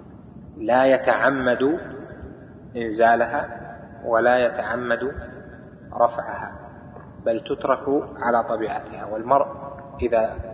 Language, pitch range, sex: Arabic, 115-140 Hz, male